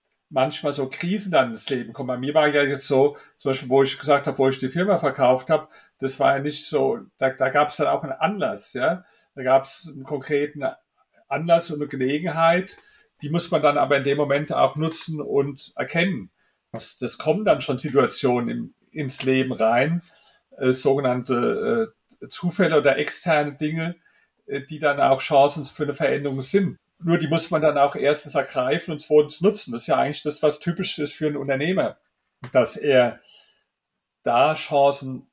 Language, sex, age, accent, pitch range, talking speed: German, male, 50-69, German, 140-165 Hz, 190 wpm